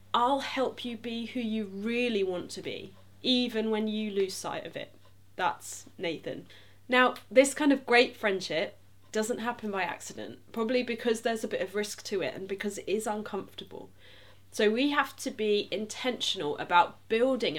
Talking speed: 175 wpm